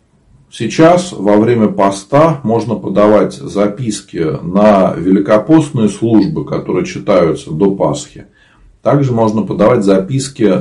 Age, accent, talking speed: 40-59, native, 100 wpm